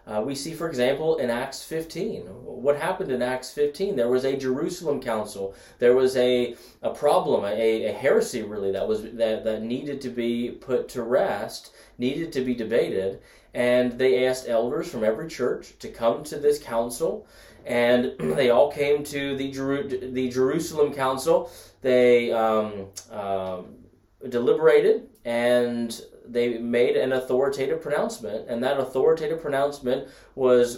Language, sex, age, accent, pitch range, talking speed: English, male, 20-39, American, 115-155 Hz, 150 wpm